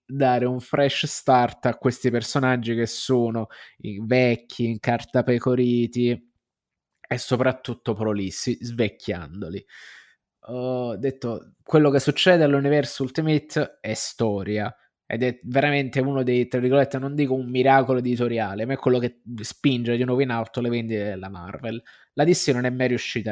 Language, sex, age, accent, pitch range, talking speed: Italian, male, 20-39, native, 115-135 Hz, 145 wpm